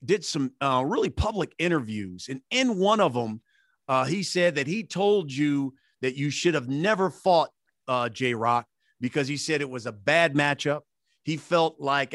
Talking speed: 190 wpm